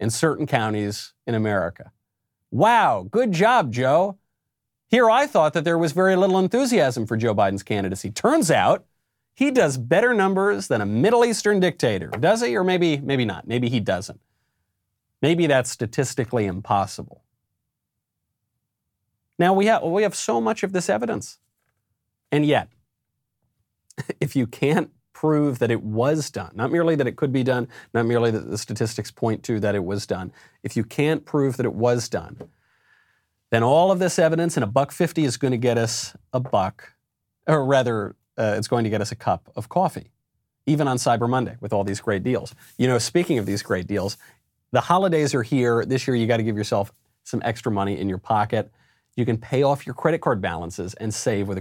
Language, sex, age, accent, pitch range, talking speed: English, male, 40-59, American, 110-155 Hz, 190 wpm